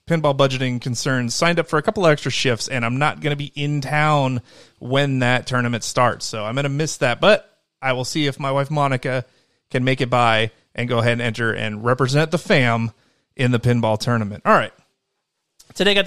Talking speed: 215 wpm